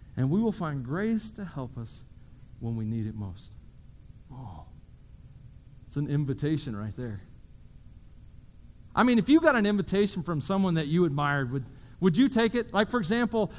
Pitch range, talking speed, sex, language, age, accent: 165-245 Hz, 170 wpm, male, English, 40-59, American